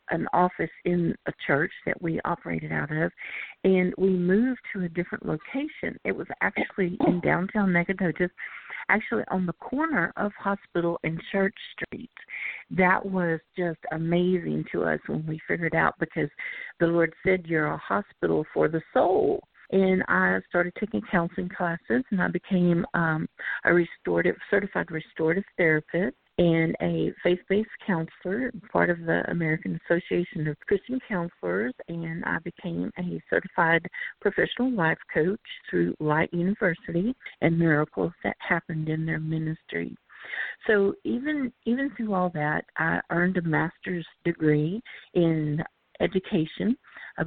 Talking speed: 140 wpm